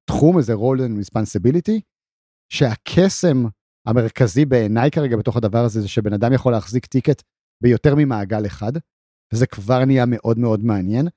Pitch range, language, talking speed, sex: 115-135 Hz, Hebrew, 140 wpm, male